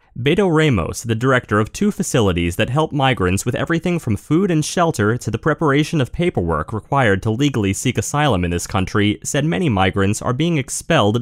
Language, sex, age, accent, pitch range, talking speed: English, male, 30-49, American, 100-145 Hz, 185 wpm